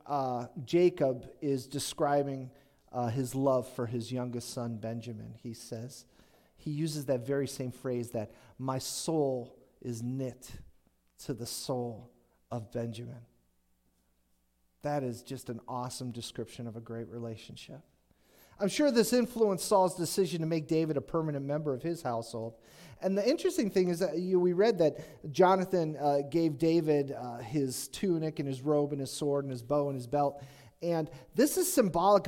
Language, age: English, 40-59